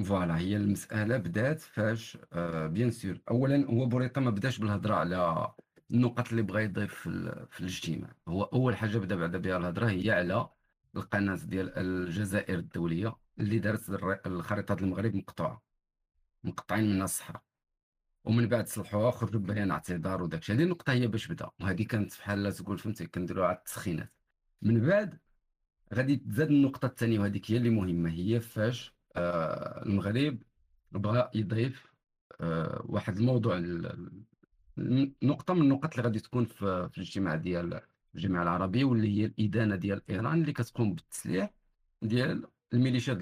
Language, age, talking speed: Arabic, 50-69, 145 wpm